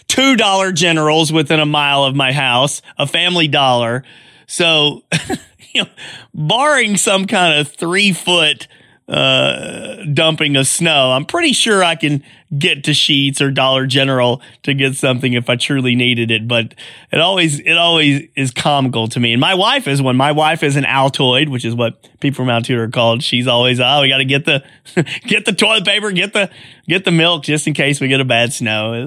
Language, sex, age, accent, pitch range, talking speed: English, male, 30-49, American, 120-155 Hz, 190 wpm